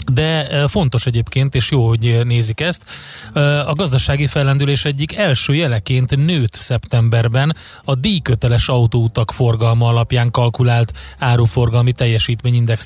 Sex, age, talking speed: male, 30-49, 110 wpm